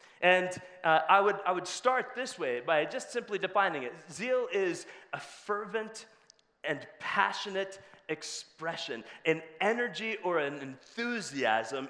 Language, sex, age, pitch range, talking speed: English, male, 30-49, 165-245 Hz, 125 wpm